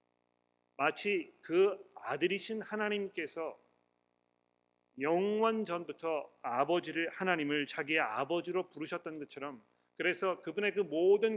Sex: male